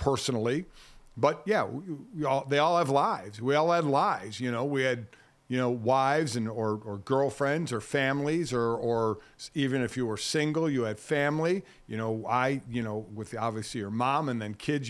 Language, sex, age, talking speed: English, male, 50-69, 195 wpm